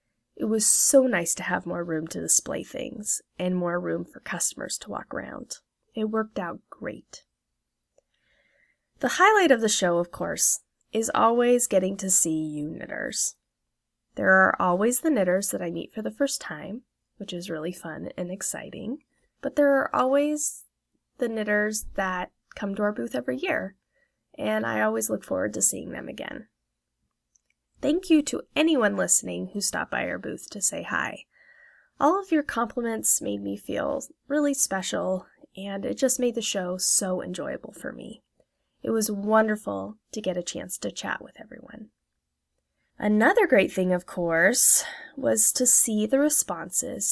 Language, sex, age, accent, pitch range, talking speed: English, female, 20-39, American, 180-265 Hz, 165 wpm